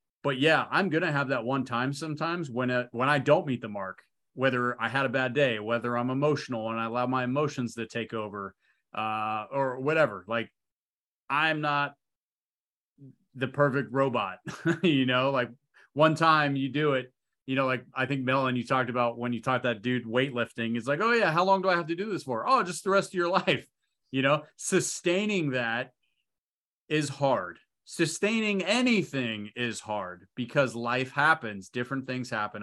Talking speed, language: 190 wpm, English